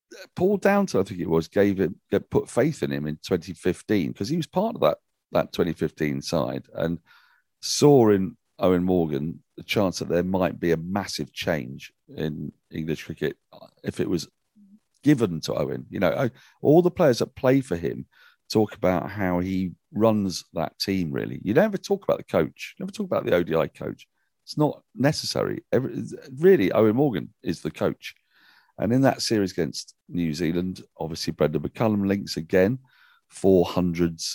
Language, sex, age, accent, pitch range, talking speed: English, male, 40-59, British, 85-130 Hz, 170 wpm